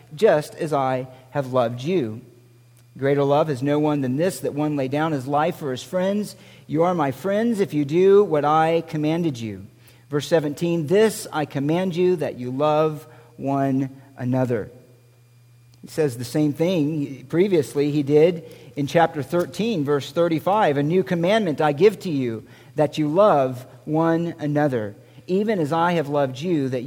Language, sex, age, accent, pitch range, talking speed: English, male, 50-69, American, 130-175 Hz, 170 wpm